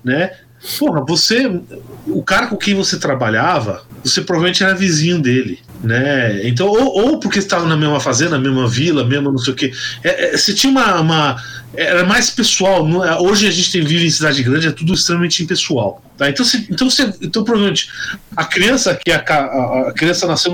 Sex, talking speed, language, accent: male, 195 wpm, Portuguese, Brazilian